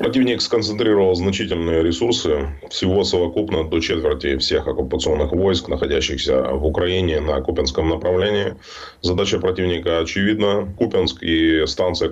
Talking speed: 115 wpm